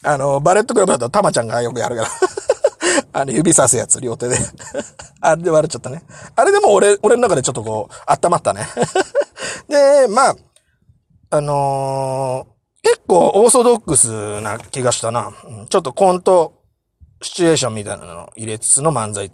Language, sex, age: Japanese, male, 30-49